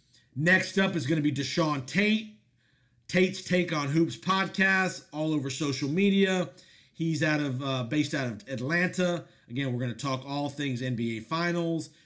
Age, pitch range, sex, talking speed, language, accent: 50-69, 130-170 Hz, male, 170 wpm, English, American